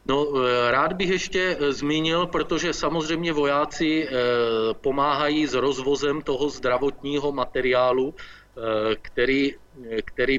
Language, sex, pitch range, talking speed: Czech, male, 120-130 Hz, 85 wpm